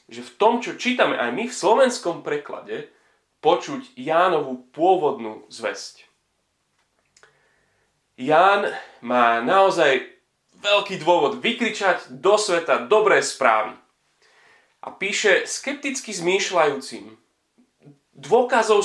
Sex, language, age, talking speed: male, Slovak, 30-49, 90 wpm